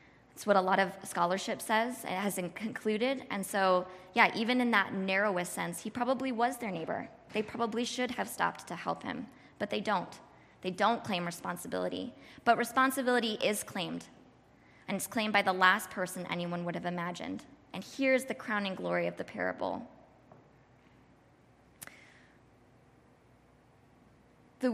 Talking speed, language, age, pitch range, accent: 150 wpm, English, 20-39, 180-230 Hz, American